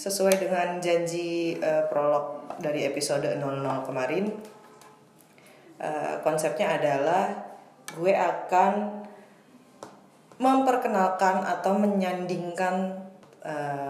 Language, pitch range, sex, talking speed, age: Indonesian, 155-205 Hz, female, 80 wpm, 20-39